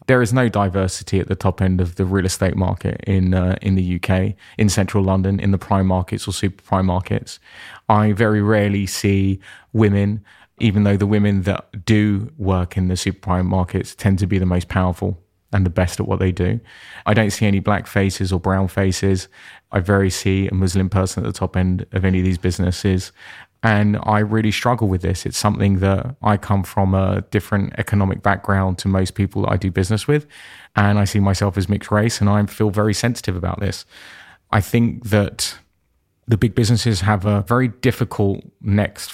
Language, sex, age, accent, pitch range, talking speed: English, male, 20-39, British, 95-105 Hz, 200 wpm